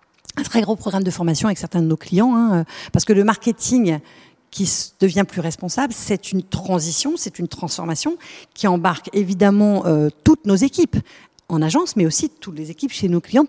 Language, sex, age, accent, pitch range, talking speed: French, female, 50-69, French, 165-220 Hz, 190 wpm